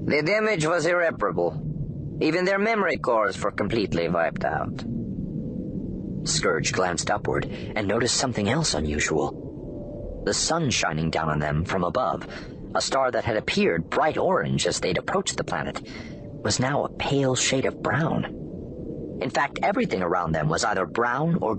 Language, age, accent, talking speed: English, 40-59, American, 155 wpm